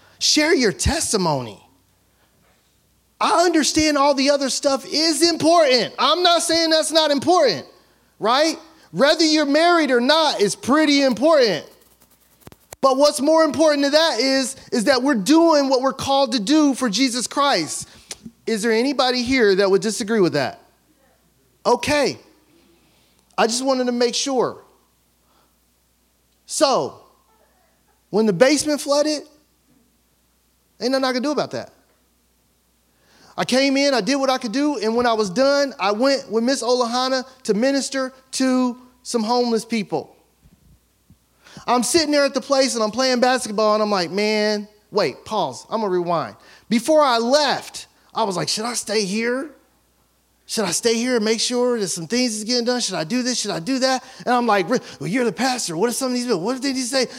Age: 30-49